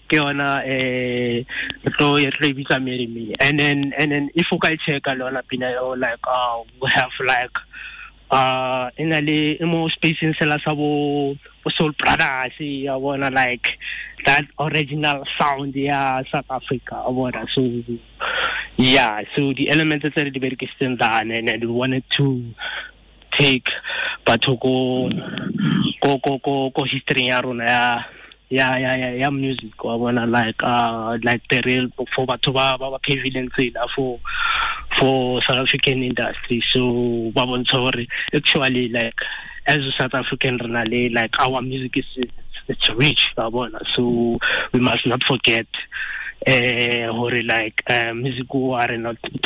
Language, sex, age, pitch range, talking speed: English, male, 20-39, 120-140 Hz, 115 wpm